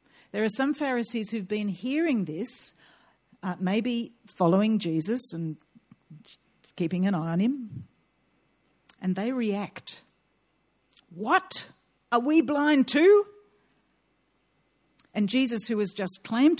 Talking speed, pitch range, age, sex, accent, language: 115 wpm, 170-235 Hz, 50-69, female, Australian, English